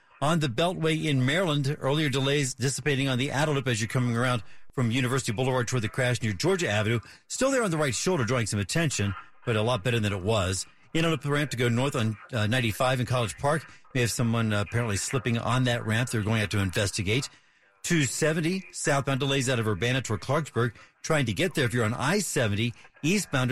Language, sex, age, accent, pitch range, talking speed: English, male, 50-69, American, 115-145 Hz, 215 wpm